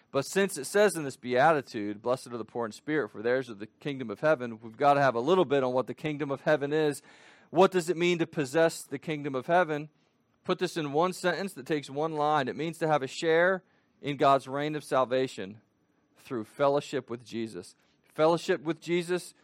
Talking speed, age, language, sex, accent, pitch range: 220 wpm, 40-59, English, male, American, 135-175 Hz